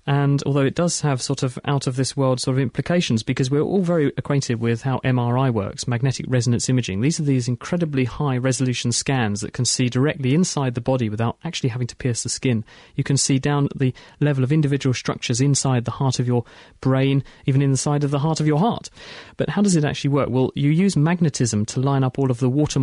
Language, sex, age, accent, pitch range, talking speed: English, male, 30-49, British, 120-140 Hz, 230 wpm